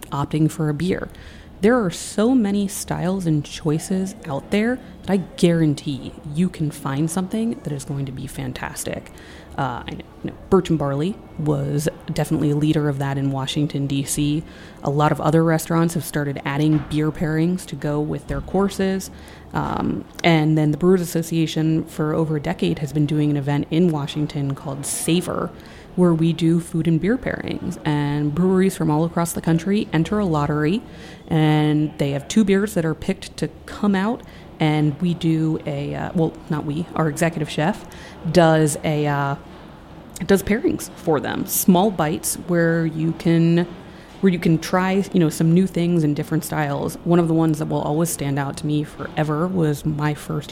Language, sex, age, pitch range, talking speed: English, female, 30-49, 150-175 Hz, 180 wpm